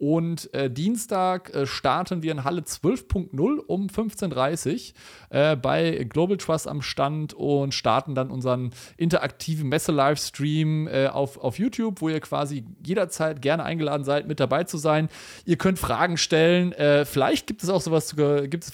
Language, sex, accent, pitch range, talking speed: German, male, German, 135-175 Hz, 155 wpm